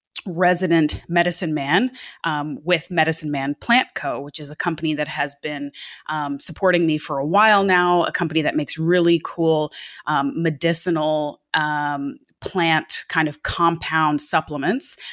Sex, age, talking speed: female, 20-39, 145 wpm